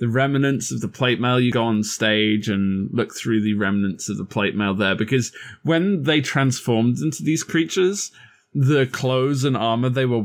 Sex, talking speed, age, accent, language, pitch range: male, 195 wpm, 20-39, British, English, 105-135 Hz